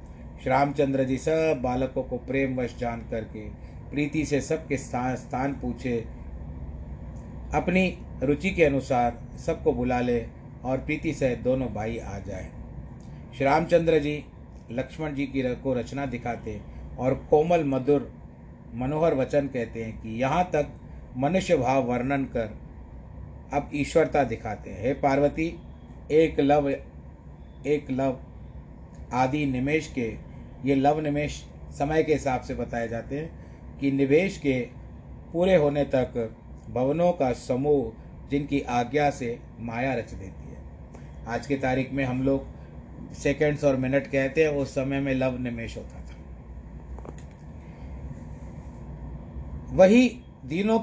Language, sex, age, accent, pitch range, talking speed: Hindi, male, 40-59, native, 105-145 Hz, 130 wpm